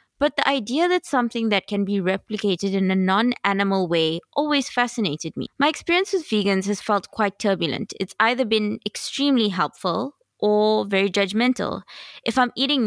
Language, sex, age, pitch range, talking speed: English, female, 20-39, 200-255 Hz, 165 wpm